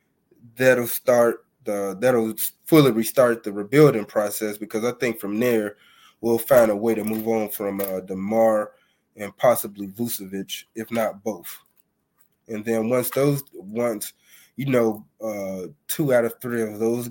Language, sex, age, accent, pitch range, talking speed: English, male, 20-39, American, 110-125 Hz, 155 wpm